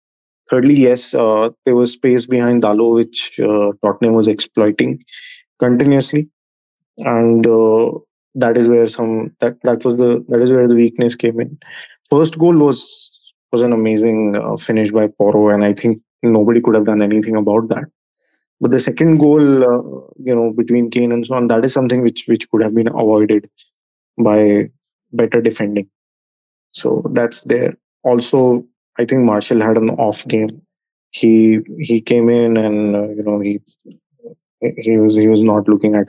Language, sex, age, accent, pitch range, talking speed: English, male, 20-39, Indian, 110-120 Hz, 170 wpm